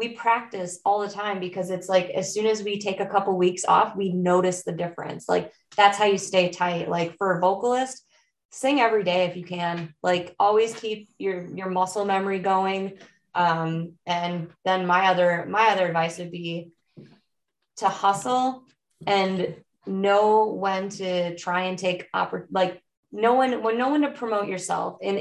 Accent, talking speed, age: American, 180 wpm, 20-39